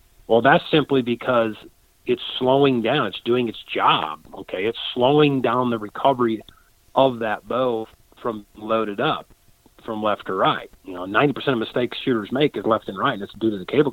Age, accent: 40-59, American